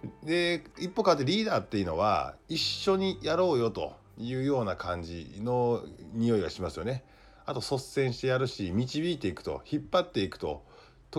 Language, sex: Japanese, male